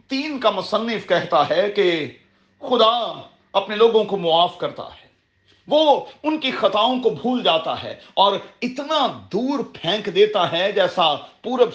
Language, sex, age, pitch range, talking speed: Urdu, male, 40-59, 175-250 Hz, 150 wpm